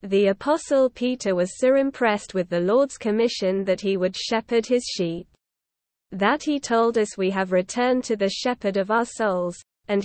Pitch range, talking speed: 190-250 Hz, 180 wpm